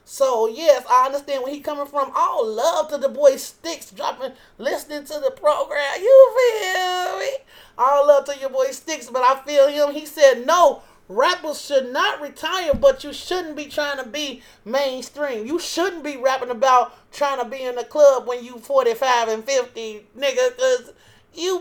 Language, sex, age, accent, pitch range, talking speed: English, male, 30-49, American, 245-315 Hz, 185 wpm